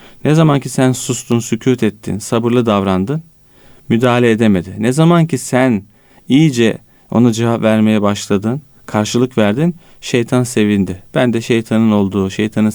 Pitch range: 110-155 Hz